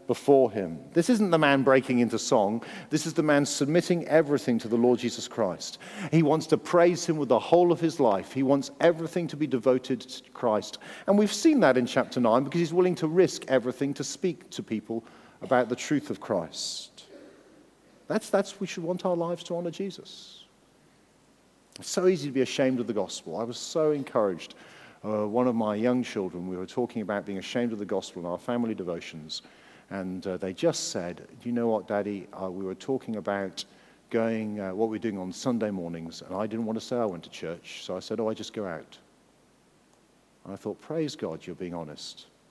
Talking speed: 215 wpm